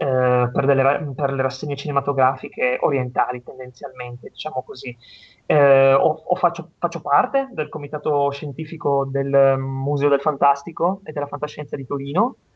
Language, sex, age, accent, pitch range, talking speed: Italian, male, 30-49, native, 140-170 Hz, 135 wpm